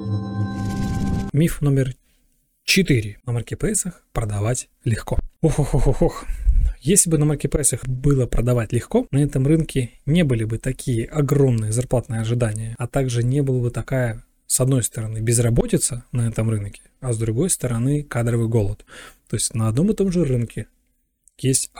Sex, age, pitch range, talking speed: male, 20-39, 115-150 Hz, 155 wpm